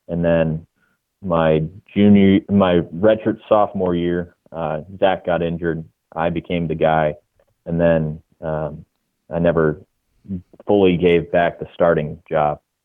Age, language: 30-49, English